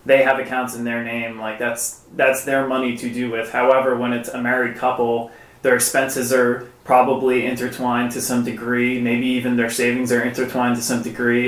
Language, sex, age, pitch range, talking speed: English, male, 20-39, 115-130 Hz, 195 wpm